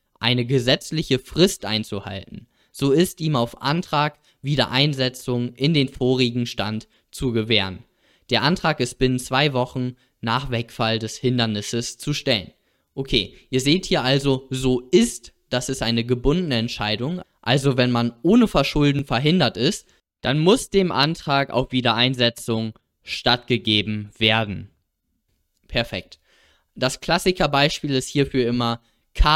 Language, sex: German, male